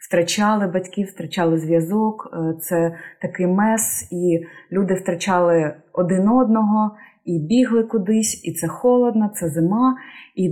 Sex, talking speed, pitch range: female, 120 wpm, 185-220 Hz